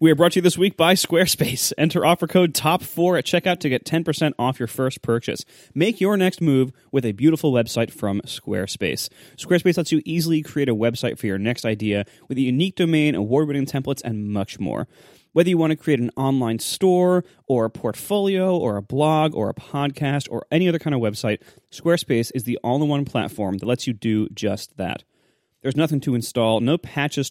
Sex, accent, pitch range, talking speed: male, American, 125-175 Hz, 200 wpm